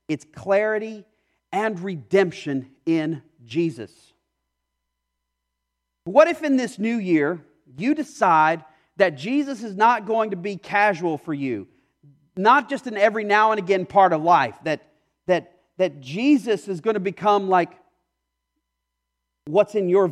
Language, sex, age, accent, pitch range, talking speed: English, male, 40-59, American, 130-205 Hz, 135 wpm